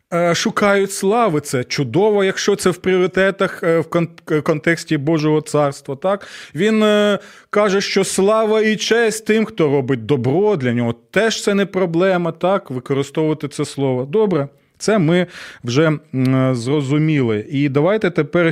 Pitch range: 130-165 Hz